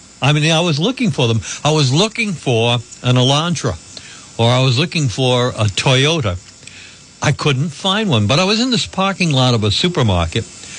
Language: English